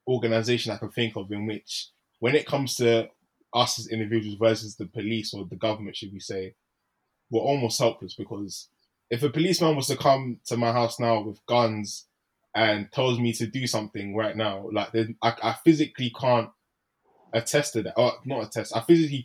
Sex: male